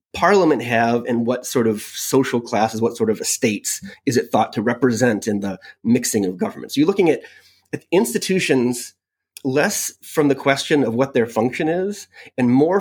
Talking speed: 185 wpm